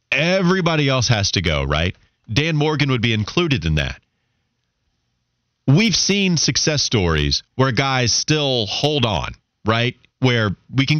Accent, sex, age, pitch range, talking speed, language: American, male, 30-49, 105-145 Hz, 140 wpm, English